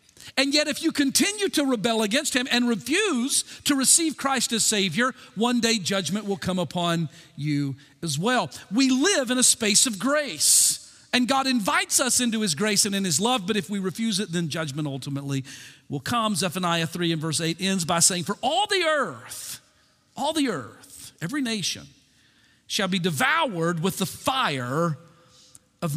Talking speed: 180 wpm